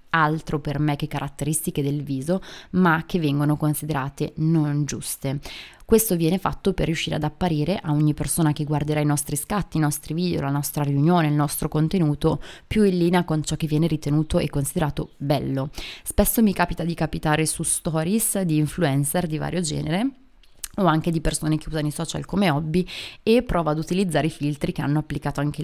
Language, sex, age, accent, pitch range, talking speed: Italian, female, 20-39, native, 145-170 Hz, 185 wpm